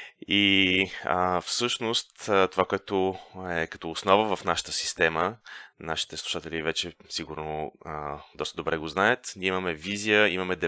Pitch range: 80-95 Hz